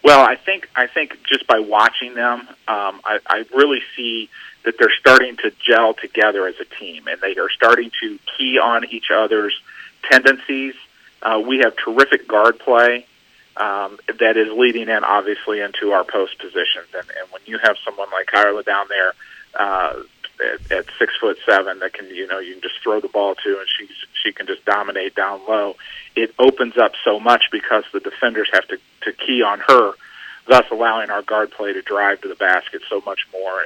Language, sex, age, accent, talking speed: English, male, 40-59, American, 195 wpm